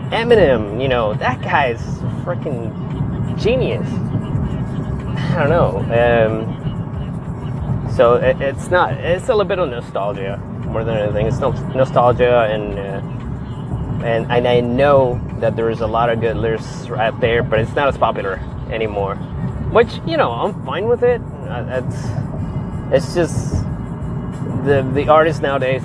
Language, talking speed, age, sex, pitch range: English, 140 wpm, 20-39, male, 120-140 Hz